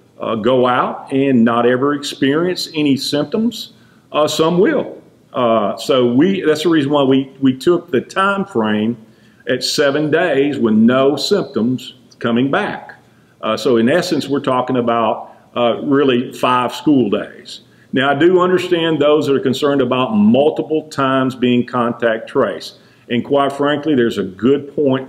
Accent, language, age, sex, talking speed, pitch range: American, English, 50-69, male, 160 wpm, 125-150 Hz